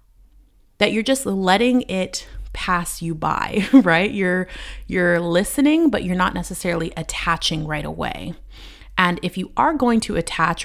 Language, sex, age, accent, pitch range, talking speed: English, female, 30-49, American, 165-210 Hz, 145 wpm